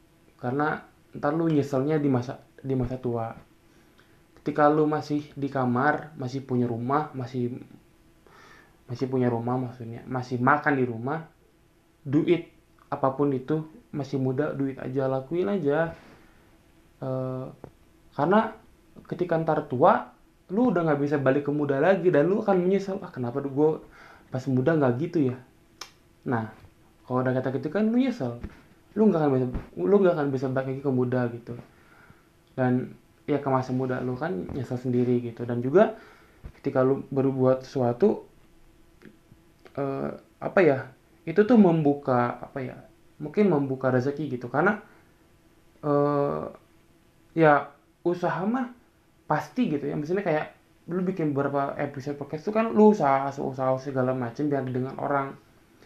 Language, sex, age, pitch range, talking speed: Indonesian, male, 20-39, 130-165 Hz, 140 wpm